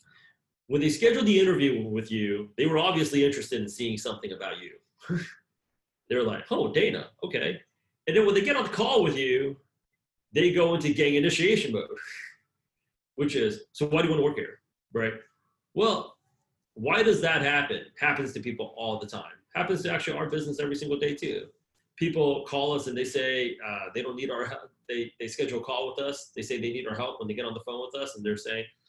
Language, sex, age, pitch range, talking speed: English, male, 30-49, 115-180 Hz, 215 wpm